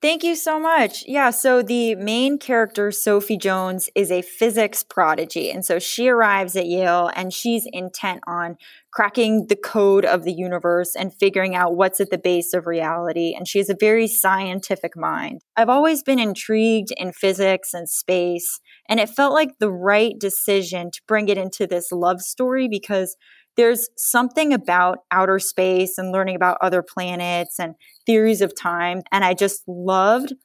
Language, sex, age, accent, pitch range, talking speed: English, female, 10-29, American, 175-215 Hz, 175 wpm